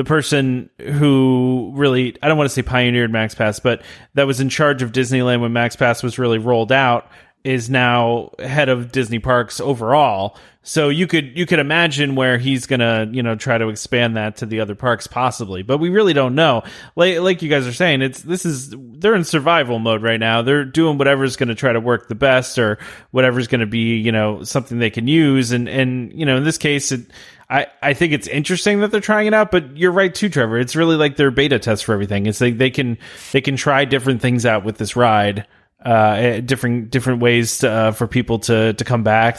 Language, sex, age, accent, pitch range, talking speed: English, male, 30-49, American, 115-145 Hz, 225 wpm